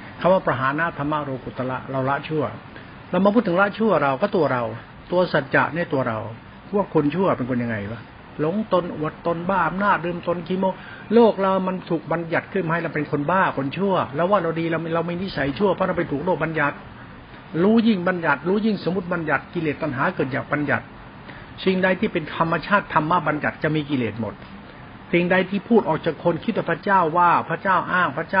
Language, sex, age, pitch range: Thai, male, 60-79, 135-180 Hz